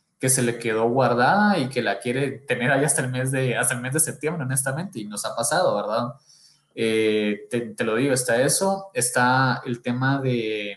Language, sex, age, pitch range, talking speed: Spanish, male, 20-39, 120-145 Hz, 205 wpm